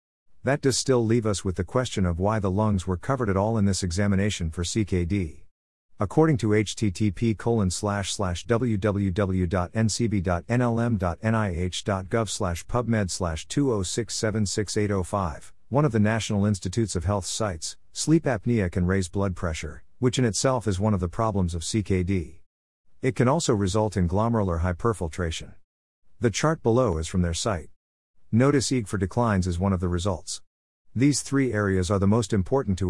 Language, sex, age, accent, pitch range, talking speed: English, male, 50-69, American, 90-115 Hz, 150 wpm